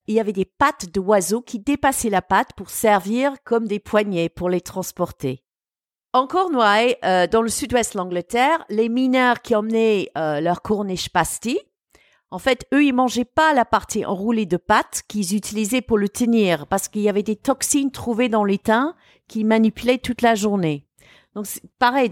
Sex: female